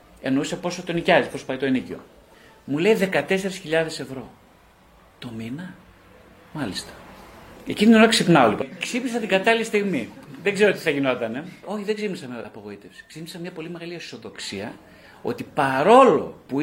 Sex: male